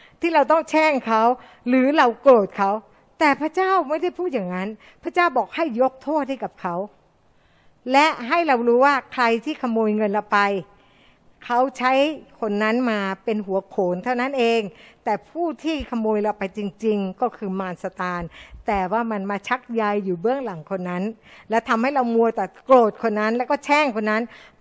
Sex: female